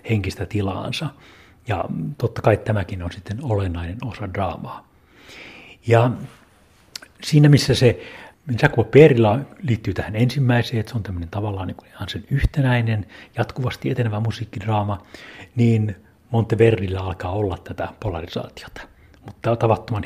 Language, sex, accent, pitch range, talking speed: Finnish, male, native, 105-125 Hz, 120 wpm